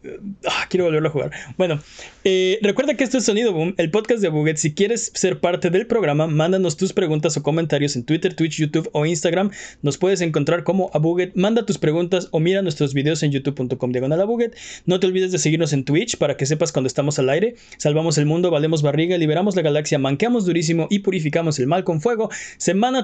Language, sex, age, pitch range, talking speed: Spanish, male, 20-39, 155-200 Hz, 205 wpm